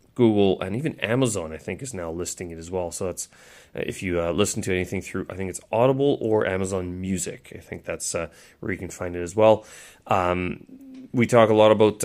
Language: English